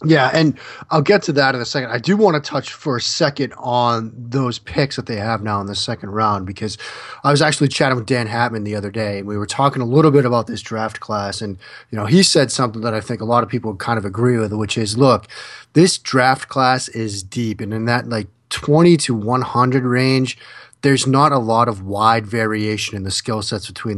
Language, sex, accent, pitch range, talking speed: English, male, American, 110-135 Hz, 240 wpm